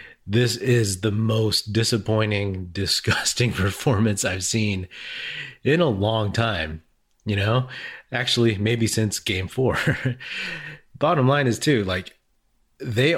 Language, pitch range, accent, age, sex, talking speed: English, 95-120 Hz, American, 30-49, male, 120 wpm